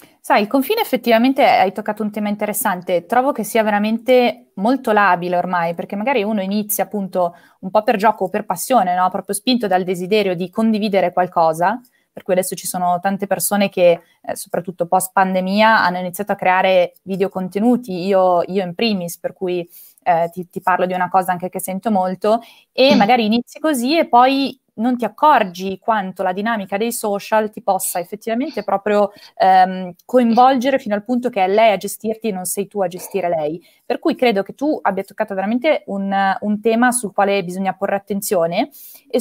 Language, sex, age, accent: Italian, female, 20-39, native